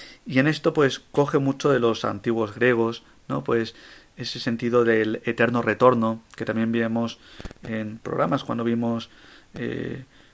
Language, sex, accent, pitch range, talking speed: Spanish, male, Spanish, 115-130 Hz, 145 wpm